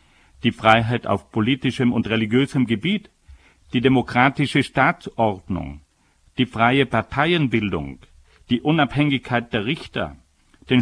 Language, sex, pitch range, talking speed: German, male, 85-140 Hz, 100 wpm